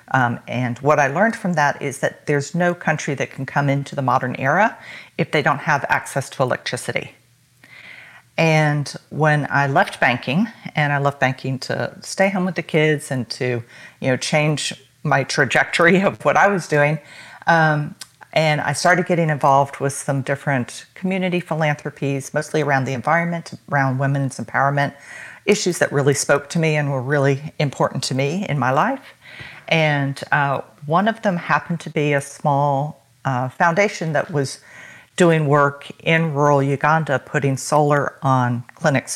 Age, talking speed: 50-69, 165 wpm